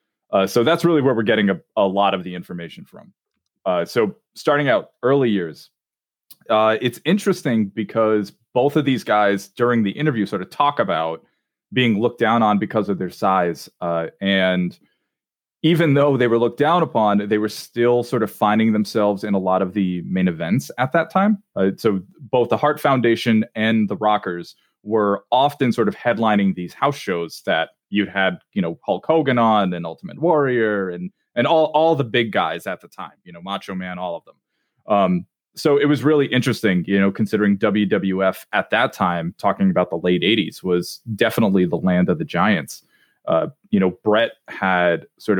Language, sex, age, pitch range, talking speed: English, male, 30-49, 95-120 Hz, 190 wpm